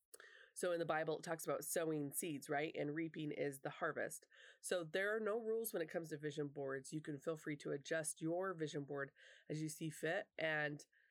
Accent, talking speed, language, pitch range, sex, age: American, 215 wpm, English, 150-185 Hz, female, 20-39